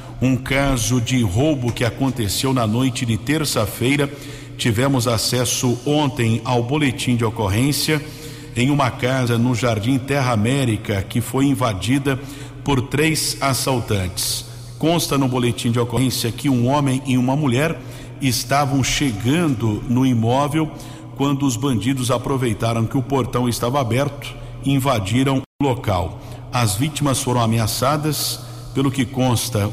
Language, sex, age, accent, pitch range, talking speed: Portuguese, male, 50-69, Brazilian, 120-140 Hz, 130 wpm